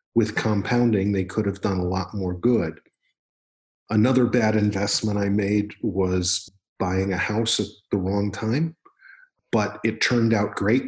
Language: English